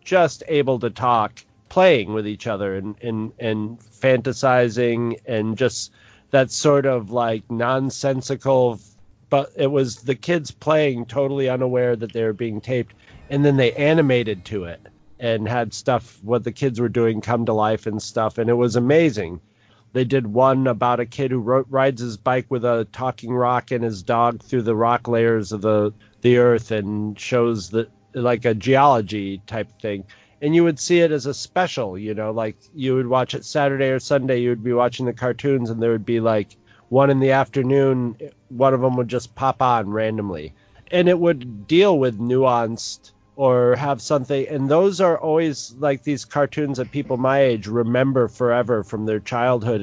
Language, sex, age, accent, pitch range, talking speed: English, male, 40-59, American, 110-130 Hz, 185 wpm